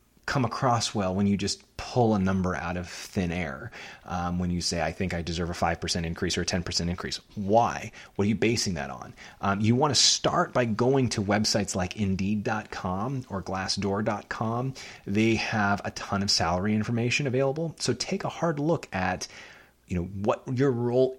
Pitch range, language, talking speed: 95-115 Hz, English, 190 wpm